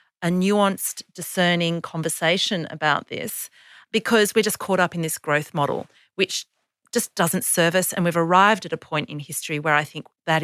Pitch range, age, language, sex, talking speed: 155-210 Hz, 40-59, English, female, 185 wpm